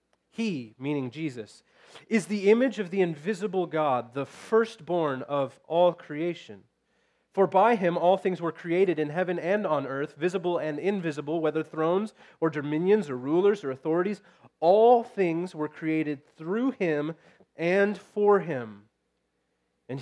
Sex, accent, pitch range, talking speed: male, American, 130-180 Hz, 145 wpm